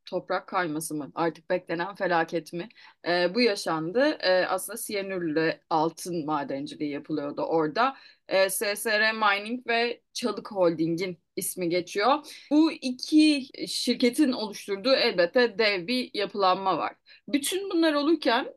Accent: native